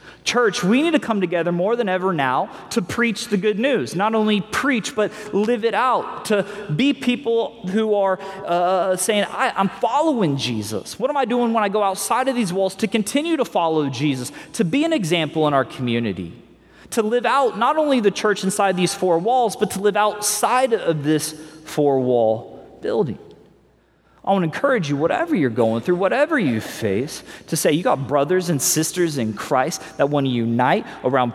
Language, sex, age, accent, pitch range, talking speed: English, male, 30-49, American, 130-210 Hz, 195 wpm